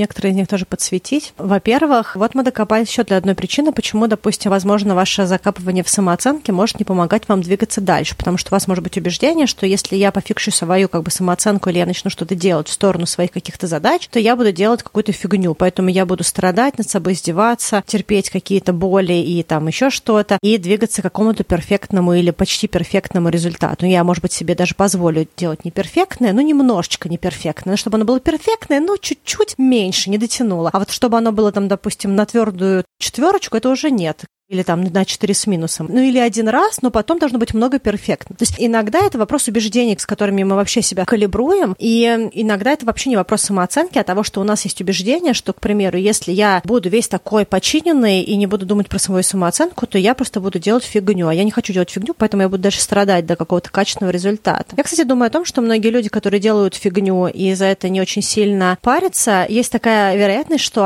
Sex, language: female, Russian